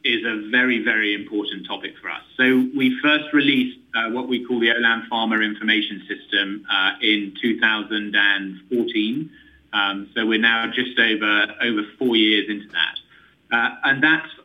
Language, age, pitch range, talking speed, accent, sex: English, 30-49, 110-130 Hz, 160 wpm, British, male